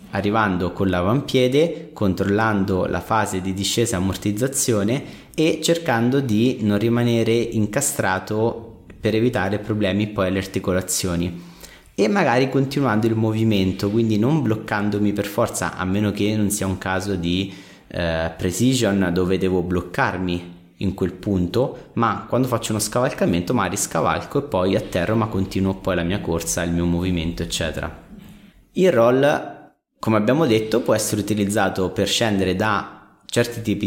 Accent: native